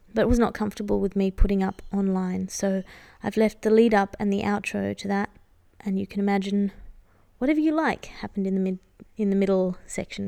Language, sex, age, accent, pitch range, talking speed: English, female, 20-39, Australian, 195-220 Hz, 195 wpm